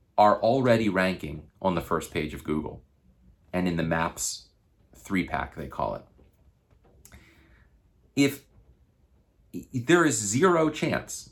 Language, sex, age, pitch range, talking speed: English, male, 40-59, 85-120 Hz, 120 wpm